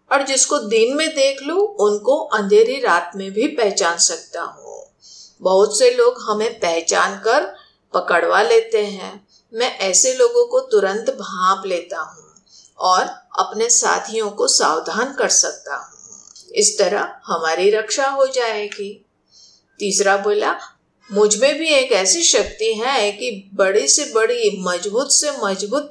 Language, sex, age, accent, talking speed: Hindi, female, 50-69, native, 140 wpm